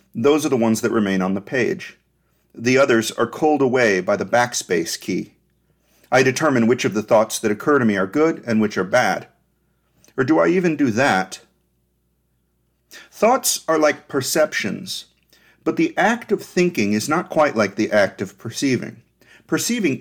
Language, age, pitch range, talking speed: English, 40-59, 105-155 Hz, 175 wpm